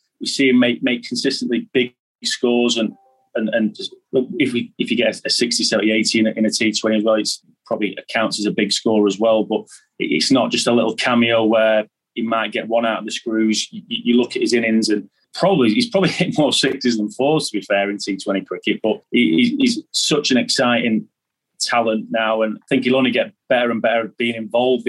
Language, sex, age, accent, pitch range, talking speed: English, male, 30-49, British, 110-125 Hz, 225 wpm